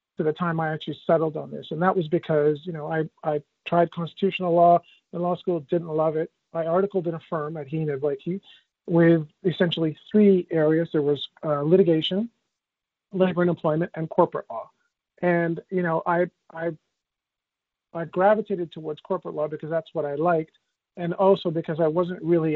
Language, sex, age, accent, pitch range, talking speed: English, male, 40-59, American, 155-180 Hz, 185 wpm